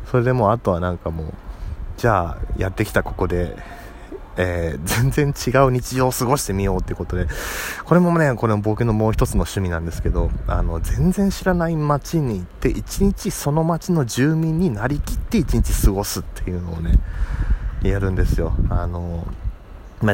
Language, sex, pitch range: Japanese, male, 90-130 Hz